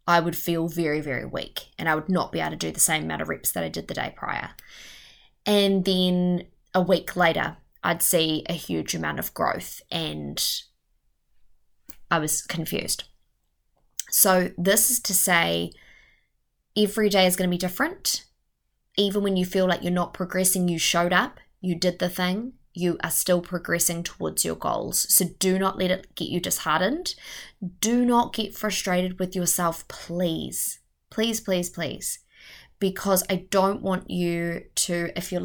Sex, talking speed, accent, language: female, 170 wpm, Australian, English